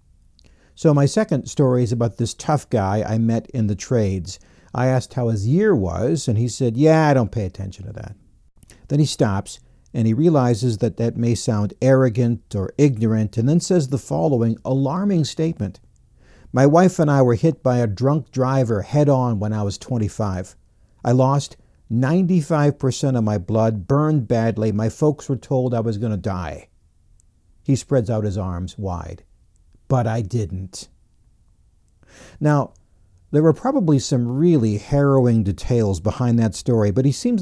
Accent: American